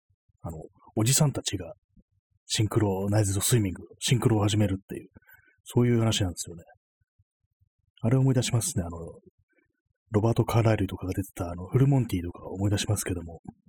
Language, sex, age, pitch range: Japanese, male, 30-49, 95-110 Hz